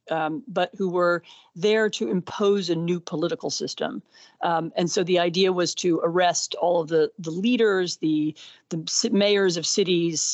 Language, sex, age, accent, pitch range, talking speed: English, female, 40-59, American, 160-195 Hz, 170 wpm